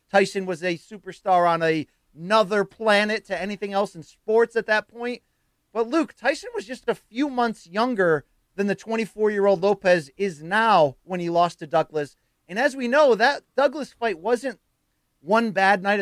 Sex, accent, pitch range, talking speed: male, American, 190-225 Hz, 170 wpm